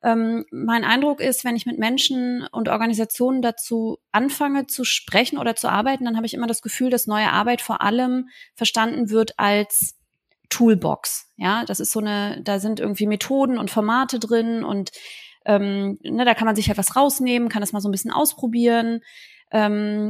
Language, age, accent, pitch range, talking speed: German, 20-39, German, 205-245 Hz, 180 wpm